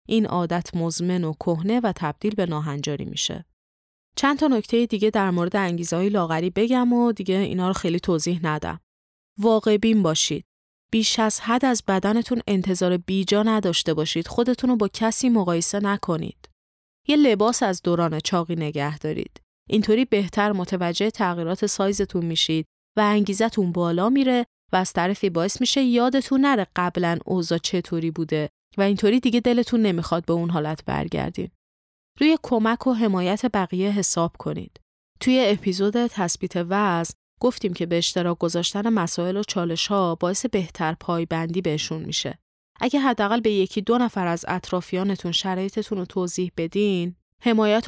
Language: Persian